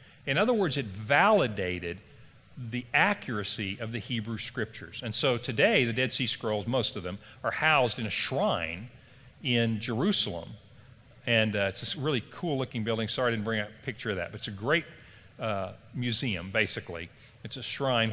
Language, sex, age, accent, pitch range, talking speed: English, male, 40-59, American, 110-140 Hz, 180 wpm